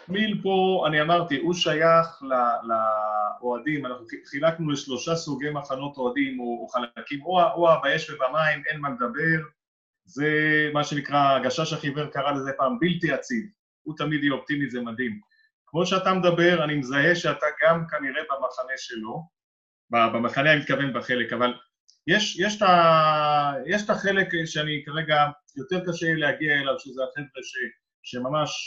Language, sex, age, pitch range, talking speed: Hebrew, male, 30-49, 135-175 Hz, 140 wpm